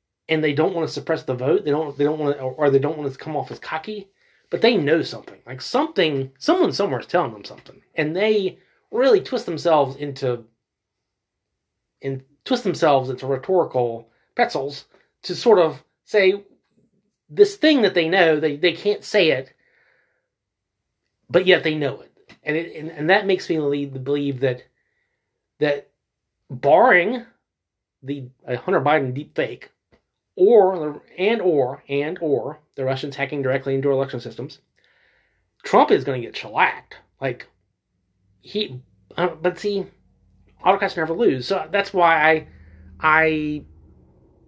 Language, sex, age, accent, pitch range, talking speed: English, male, 30-49, American, 130-185 Hz, 160 wpm